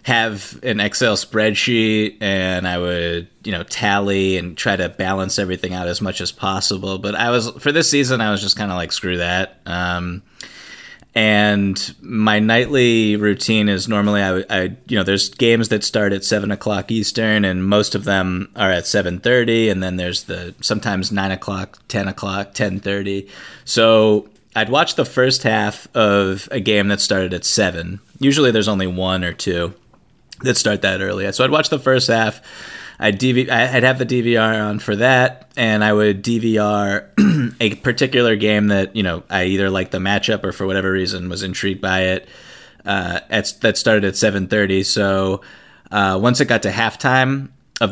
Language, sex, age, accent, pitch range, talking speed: English, male, 30-49, American, 95-110 Hz, 180 wpm